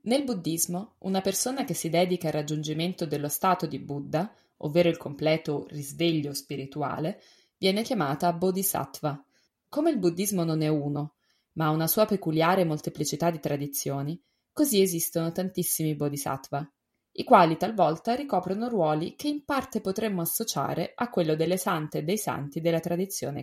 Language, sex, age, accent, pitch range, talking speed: Italian, female, 20-39, native, 155-210 Hz, 150 wpm